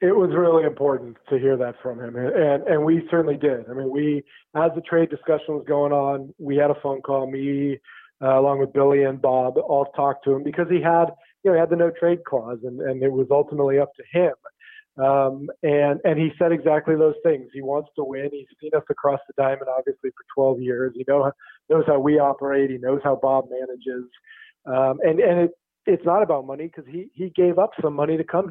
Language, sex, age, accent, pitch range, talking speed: English, male, 40-59, American, 135-150 Hz, 230 wpm